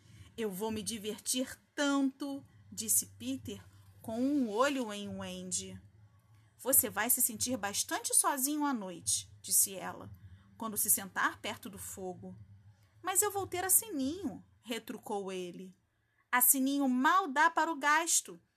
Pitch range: 185-290 Hz